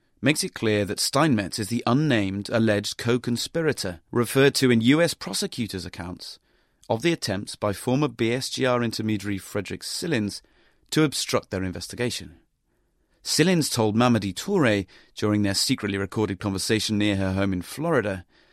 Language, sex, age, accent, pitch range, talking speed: English, male, 30-49, British, 100-135 Hz, 140 wpm